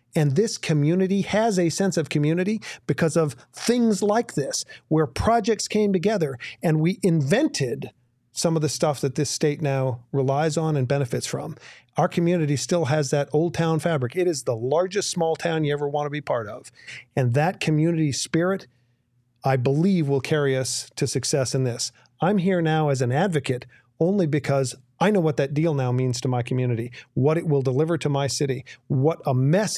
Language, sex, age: English, male, 40-59